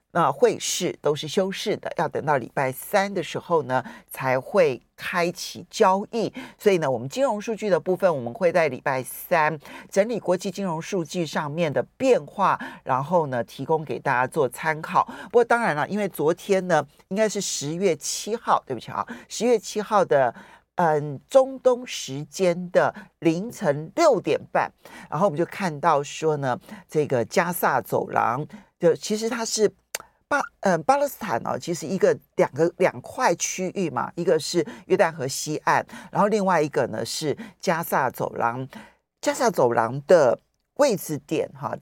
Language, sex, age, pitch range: Chinese, male, 50-69, 155-225 Hz